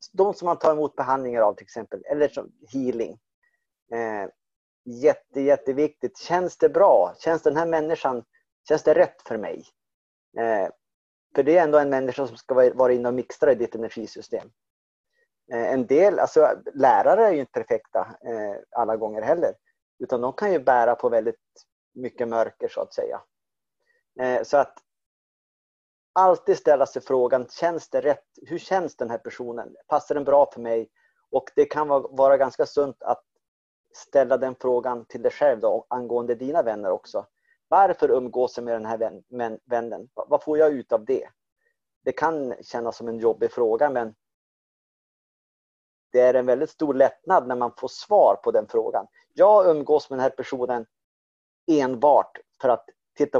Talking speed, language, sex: 175 wpm, Swedish, male